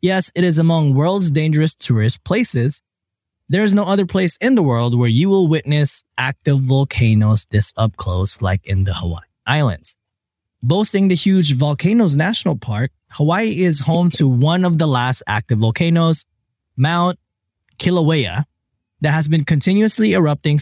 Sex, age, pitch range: male, 20-39, 115-170 Hz